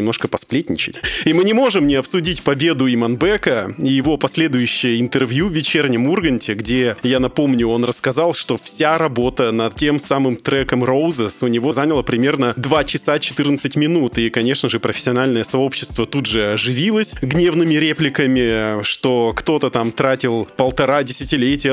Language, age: Russian, 20-39